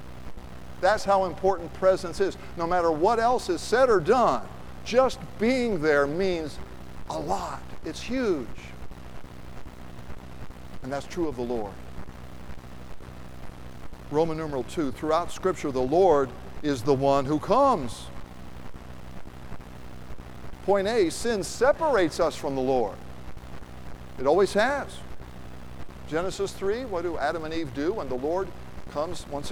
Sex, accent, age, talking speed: male, American, 50-69, 130 wpm